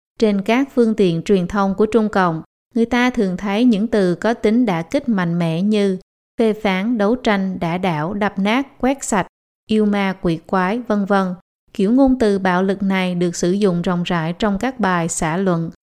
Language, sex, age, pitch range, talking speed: Vietnamese, female, 20-39, 185-225 Hz, 210 wpm